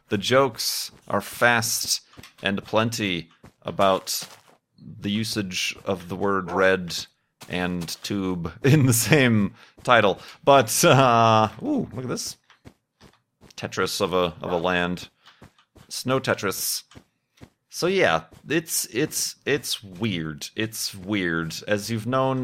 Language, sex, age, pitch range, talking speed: English, male, 30-49, 90-115 Hz, 120 wpm